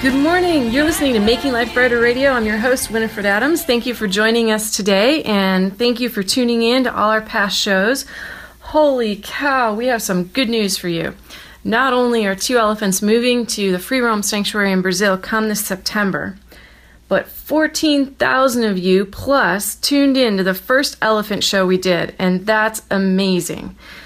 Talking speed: 180 wpm